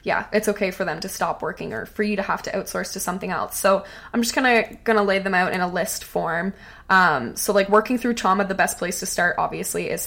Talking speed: 260 wpm